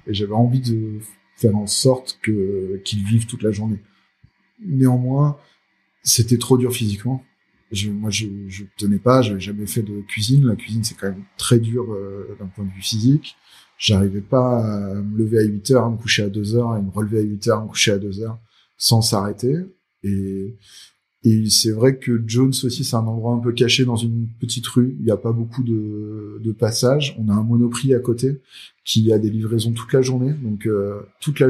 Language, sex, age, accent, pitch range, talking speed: French, male, 20-39, French, 105-125 Hz, 215 wpm